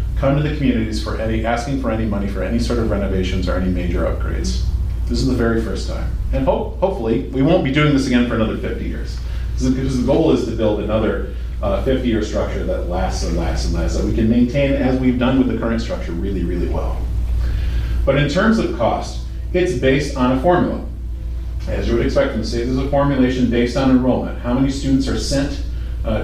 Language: English